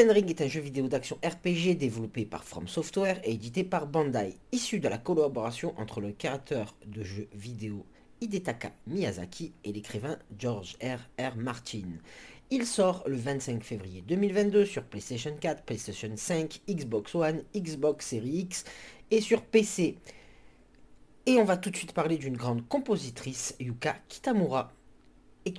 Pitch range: 120-180 Hz